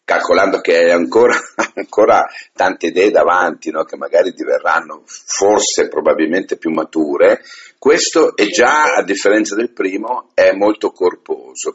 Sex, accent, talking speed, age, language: male, native, 135 wpm, 50-69, Italian